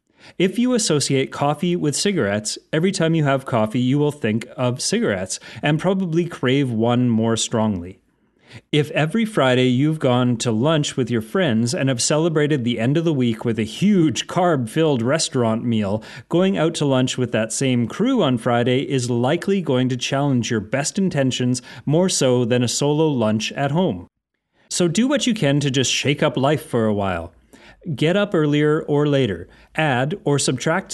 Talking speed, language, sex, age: 180 wpm, English, male, 30-49